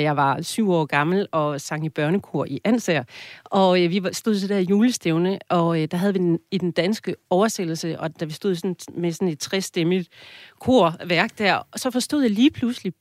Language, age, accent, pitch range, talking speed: Danish, 40-59, native, 170-205 Hz, 210 wpm